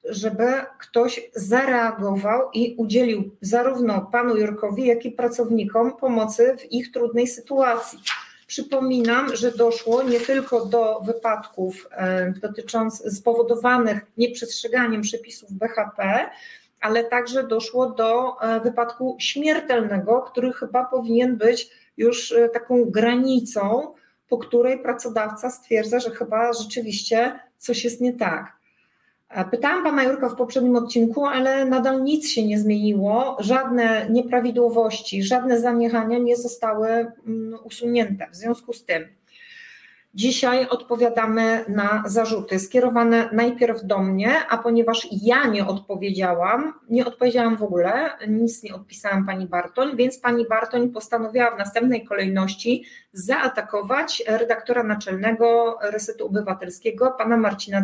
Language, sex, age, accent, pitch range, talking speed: Polish, female, 40-59, native, 220-250 Hz, 120 wpm